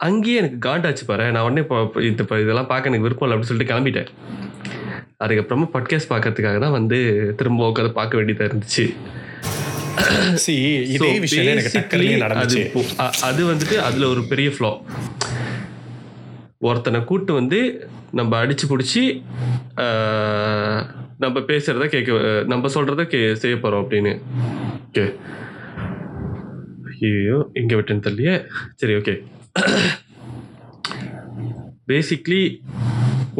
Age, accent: 20-39, native